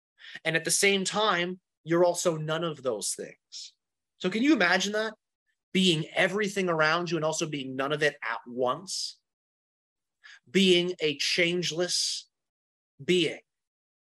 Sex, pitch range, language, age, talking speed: male, 150-190 Hz, English, 30-49, 135 wpm